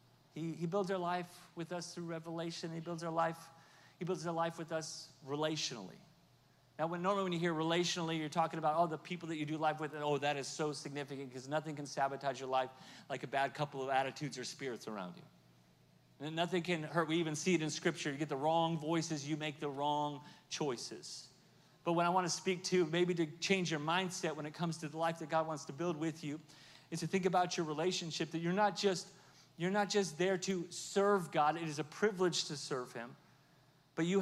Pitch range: 155-190 Hz